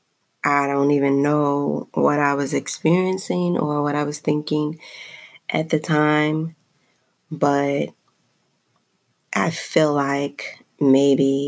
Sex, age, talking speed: female, 20-39, 110 wpm